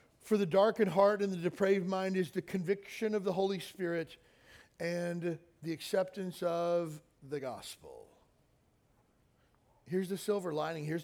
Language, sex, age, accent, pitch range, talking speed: English, male, 40-59, American, 160-195 Hz, 140 wpm